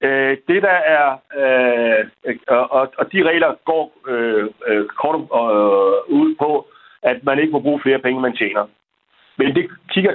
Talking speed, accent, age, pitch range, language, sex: 135 wpm, native, 60-79, 125-155 Hz, Danish, male